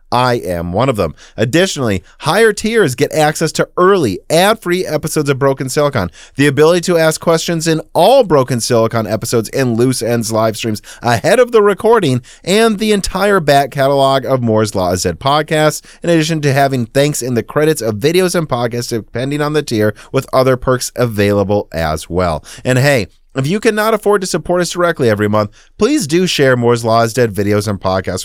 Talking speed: 190 wpm